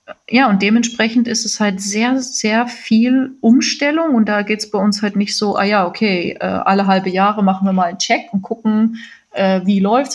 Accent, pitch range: German, 200-240 Hz